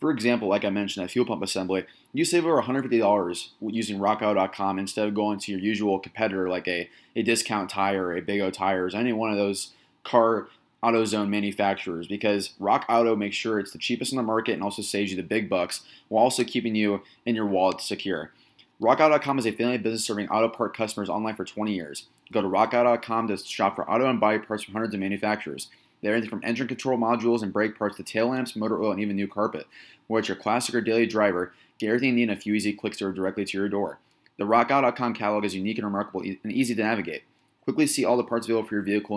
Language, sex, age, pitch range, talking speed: English, male, 20-39, 100-115 Hz, 235 wpm